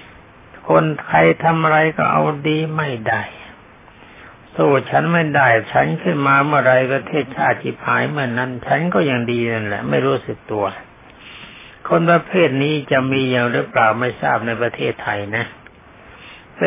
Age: 60-79